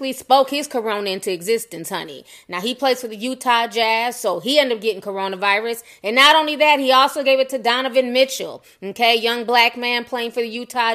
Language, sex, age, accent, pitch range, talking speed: English, female, 20-39, American, 205-265 Hz, 210 wpm